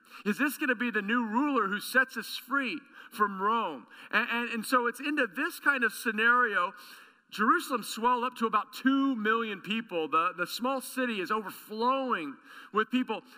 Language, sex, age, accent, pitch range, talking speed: English, male, 40-59, American, 225-265 Hz, 180 wpm